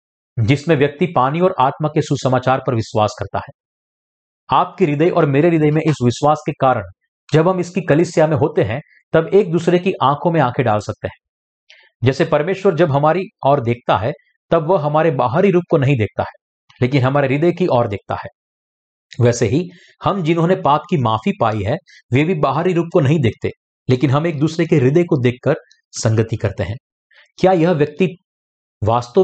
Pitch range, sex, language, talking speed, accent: 125-170 Hz, male, Hindi, 190 wpm, native